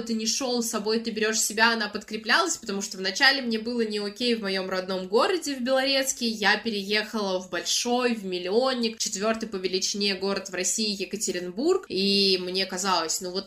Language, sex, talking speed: Russian, female, 185 wpm